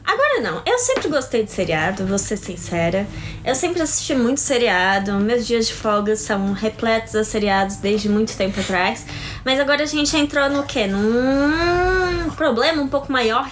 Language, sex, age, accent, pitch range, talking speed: Portuguese, female, 10-29, Brazilian, 215-295 Hz, 175 wpm